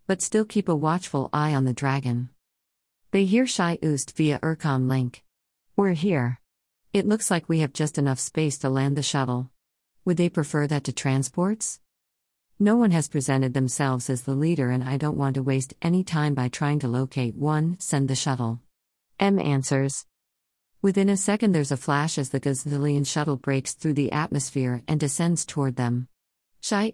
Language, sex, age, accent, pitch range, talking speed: English, female, 50-69, American, 130-160 Hz, 180 wpm